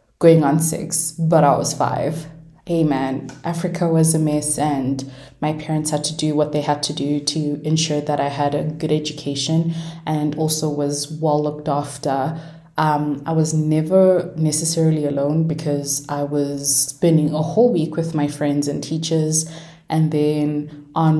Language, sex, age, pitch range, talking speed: English, female, 20-39, 150-165 Hz, 165 wpm